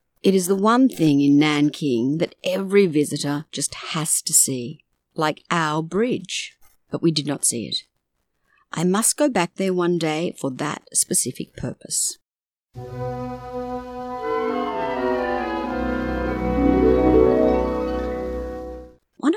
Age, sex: 50-69, female